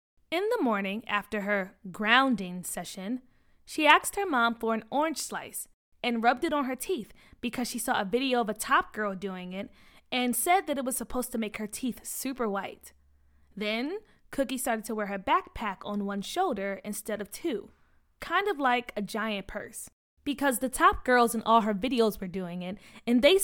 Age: 20-39